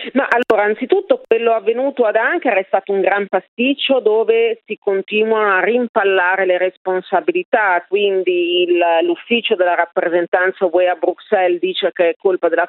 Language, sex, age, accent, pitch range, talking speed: Italian, female, 40-59, native, 170-220 Hz, 150 wpm